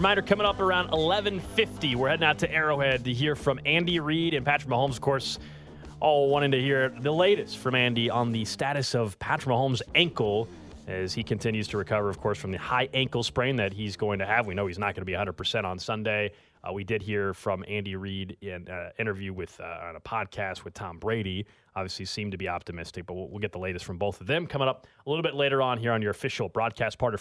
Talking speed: 245 wpm